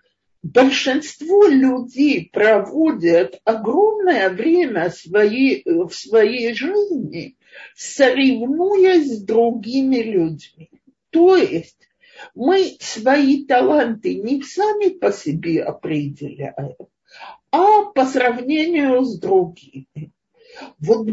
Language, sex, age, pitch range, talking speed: Russian, male, 50-69, 210-350 Hz, 80 wpm